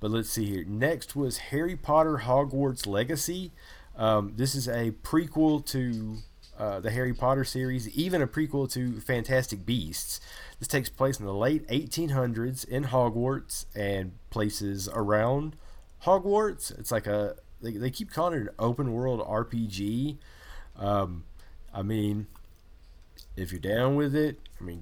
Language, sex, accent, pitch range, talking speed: English, male, American, 95-135 Hz, 150 wpm